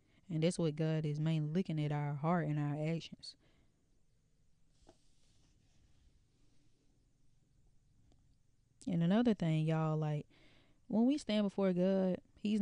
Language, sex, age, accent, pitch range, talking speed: English, female, 20-39, American, 150-175 Hz, 115 wpm